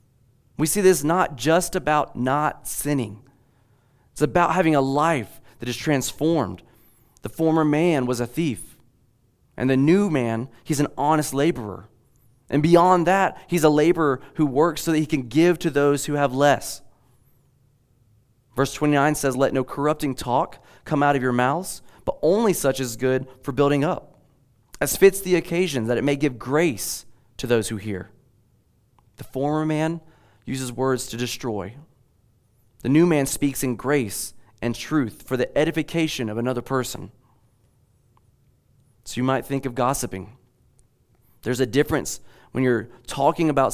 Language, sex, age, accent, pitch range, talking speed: English, male, 30-49, American, 120-145 Hz, 160 wpm